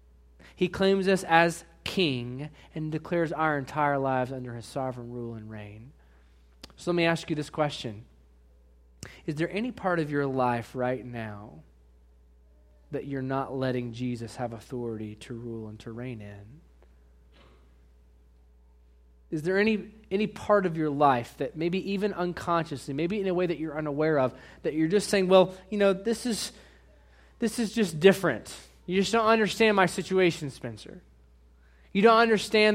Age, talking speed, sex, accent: 20-39, 160 wpm, male, American